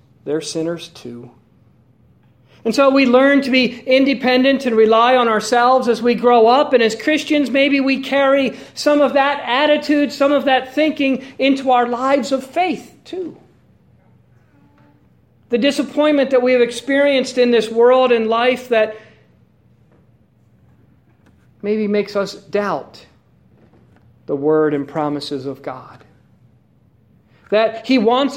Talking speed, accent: 135 wpm, American